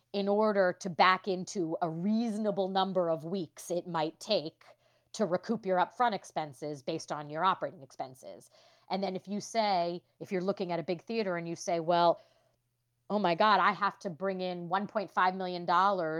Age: 30-49